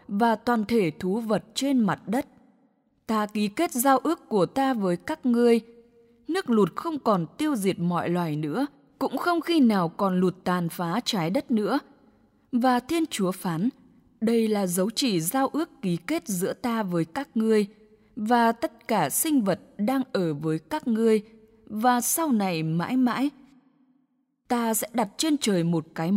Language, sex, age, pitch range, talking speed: English, female, 10-29, 195-265 Hz, 175 wpm